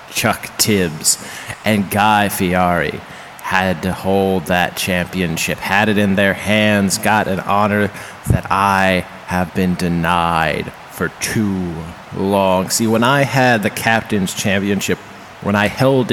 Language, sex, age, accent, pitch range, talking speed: English, male, 30-49, American, 95-110 Hz, 135 wpm